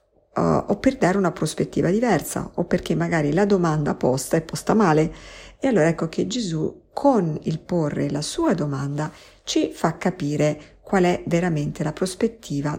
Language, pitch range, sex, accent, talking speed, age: Italian, 145-195 Hz, female, native, 160 wpm, 50-69